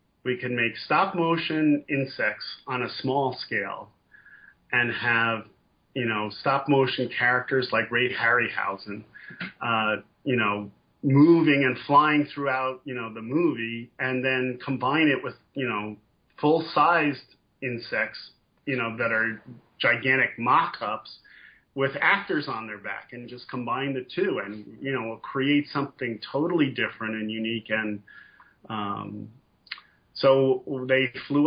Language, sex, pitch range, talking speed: English, male, 115-135 Hz, 135 wpm